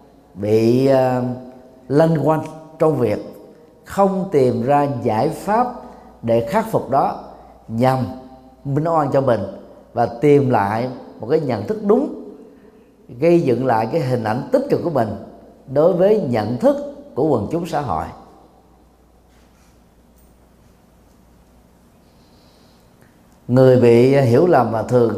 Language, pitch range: Vietnamese, 110-165 Hz